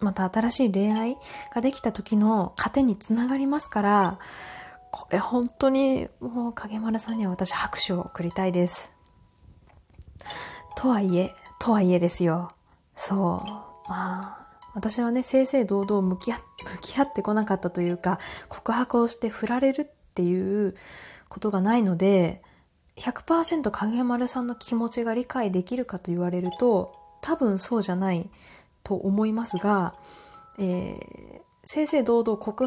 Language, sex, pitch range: Japanese, female, 185-245 Hz